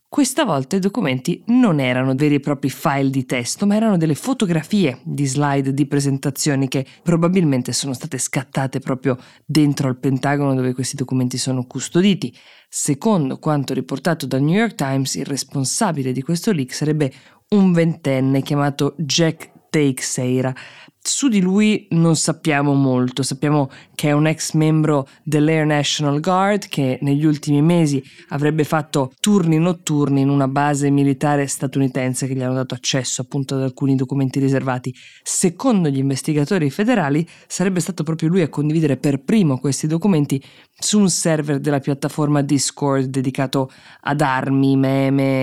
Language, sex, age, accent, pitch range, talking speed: Italian, female, 20-39, native, 135-160 Hz, 150 wpm